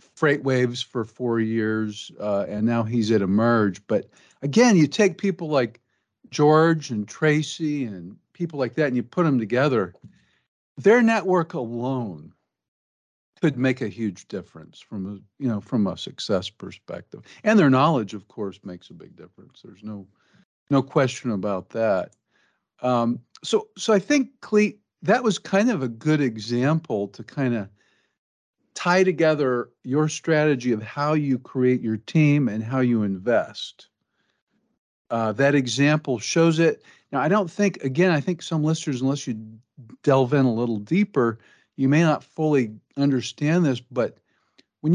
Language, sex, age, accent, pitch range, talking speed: English, male, 50-69, American, 115-155 Hz, 160 wpm